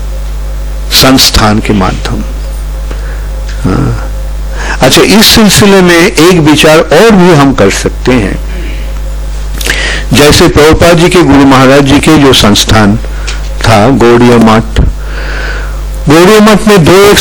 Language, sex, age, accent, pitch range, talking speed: English, male, 50-69, Indian, 110-165 Hz, 110 wpm